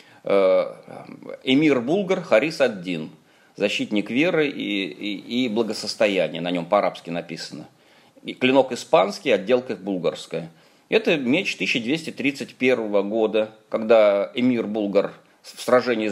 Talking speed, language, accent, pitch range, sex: 110 wpm, Russian, native, 105-140 Hz, male